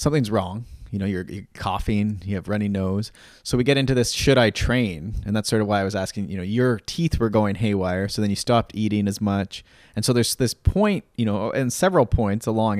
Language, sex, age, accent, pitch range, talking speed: English, male, 20-39, American, 100-120 Hz, 245 wpm